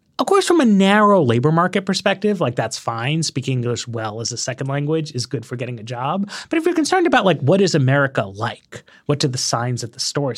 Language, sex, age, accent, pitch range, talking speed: English, male, 30-49, American, 130-200 Hz, 235 wpm